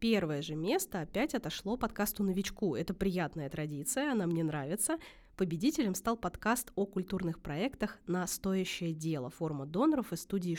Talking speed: 140 wpm